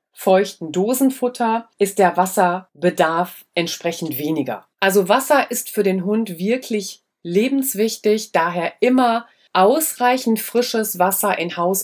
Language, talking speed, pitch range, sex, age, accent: German, 110 wpm, 160-200 Hz, female, 30-49, German